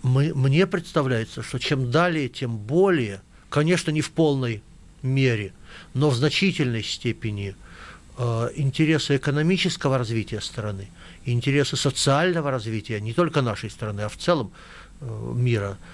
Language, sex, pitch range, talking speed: Russian, male, 115-155 Hz, 115 wpm